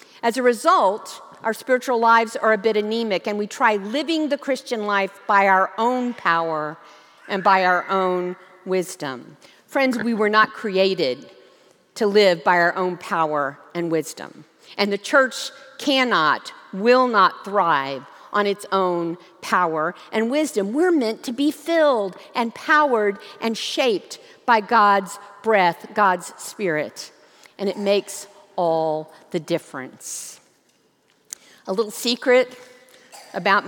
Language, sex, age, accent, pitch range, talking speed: English, female, 50-69, American, 190-250 Hz, 135 wpm